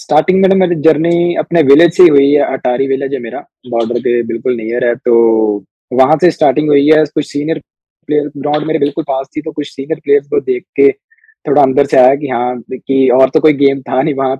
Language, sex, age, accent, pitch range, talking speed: English, male, 20-39, Indian, 125-155 Hz, 175 wpm